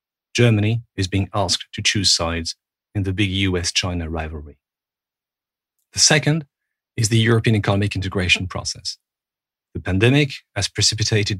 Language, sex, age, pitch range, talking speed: English, male, 40-59, 90-115 Hz, 125 wpm